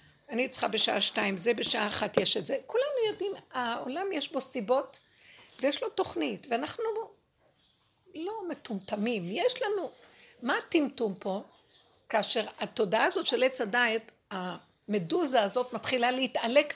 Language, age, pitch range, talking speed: Hebrew, 60-79, 210-265 Hz, 135 wpm